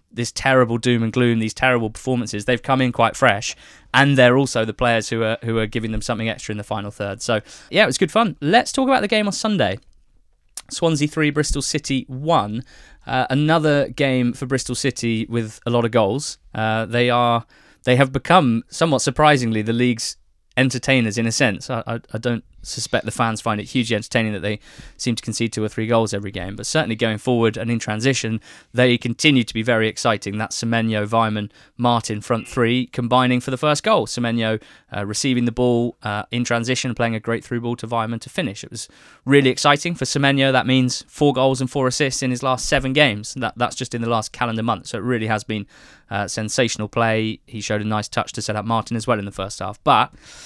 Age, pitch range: 20-39, 110-130 Hz